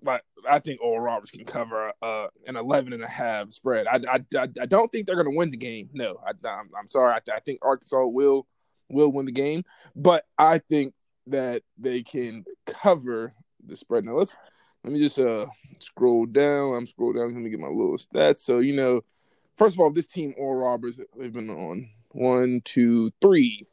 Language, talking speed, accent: English, 200 wpm, American